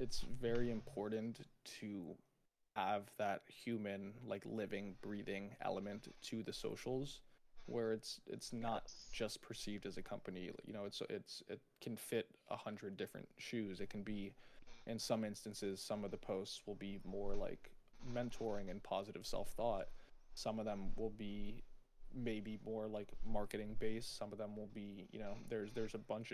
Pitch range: 100-115 Hz